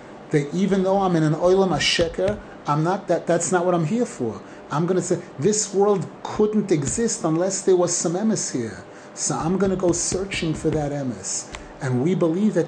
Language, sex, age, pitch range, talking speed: English, male, 30-49, 145-185 Hz, 215 wpm